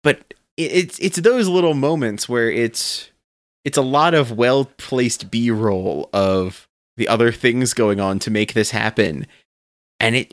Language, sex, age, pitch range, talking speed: English, male, 30-49, 115-160 Hz, 165 wpm